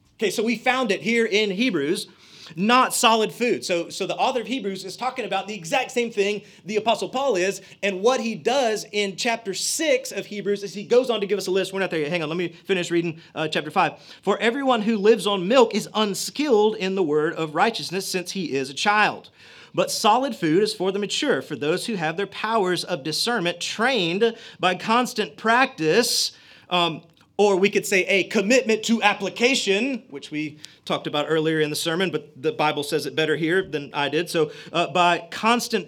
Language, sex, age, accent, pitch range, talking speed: English, male, 30-49, American, 170-225 Hz, 210 wpm